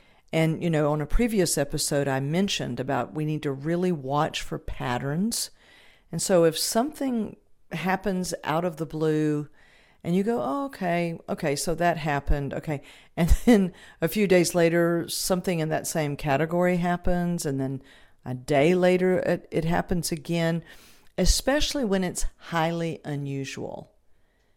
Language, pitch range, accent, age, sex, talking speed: English, 140-180 Hz, American, 50-69, female, 150 wpm